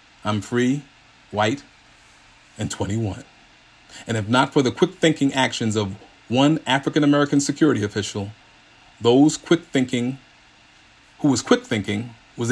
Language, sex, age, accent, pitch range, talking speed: English, male, 40-59, American, 110-140 Hz, 110 wpm